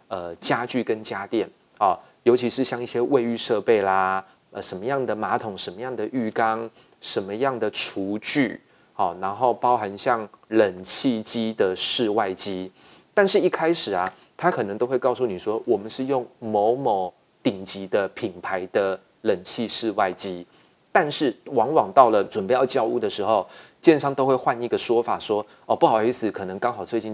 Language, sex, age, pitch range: Chinese, male, 30-49, 105-130 Hz